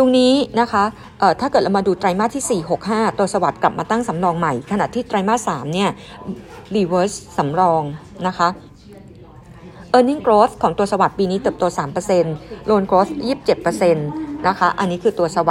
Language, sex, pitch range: Thai, female, 175-225 Hz